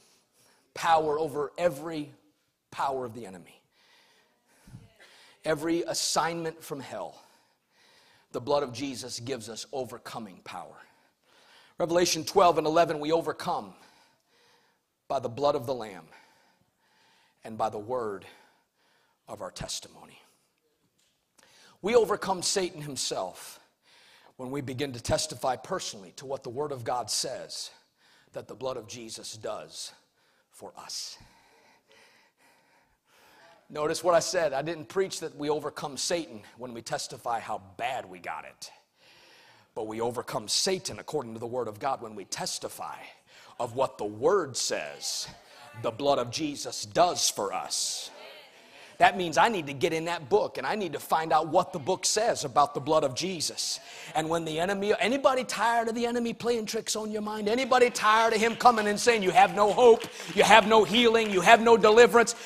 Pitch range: 145-215 Hz